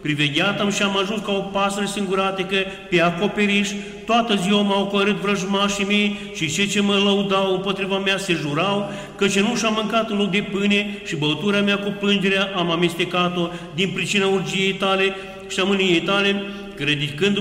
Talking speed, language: 170 wpm, Romanian